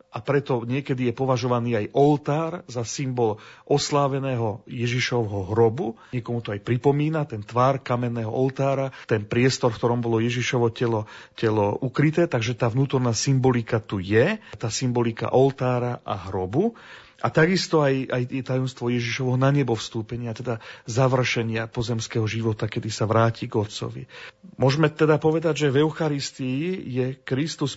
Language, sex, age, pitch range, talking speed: Slovak, male, 40-59, 115-145 Hz, 140 wpm